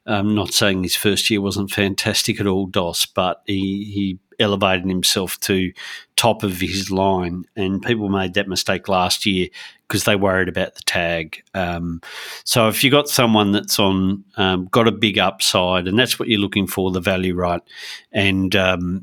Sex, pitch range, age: male, 90-105 Hz, 40-59